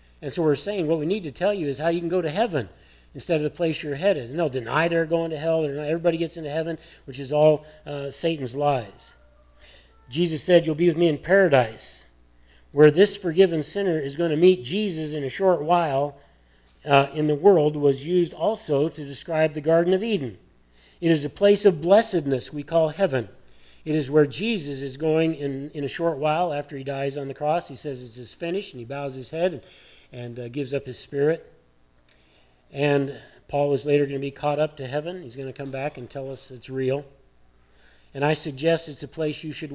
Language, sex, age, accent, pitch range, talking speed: English, male, 50-69, American, 120-165 Hz, 220 wpm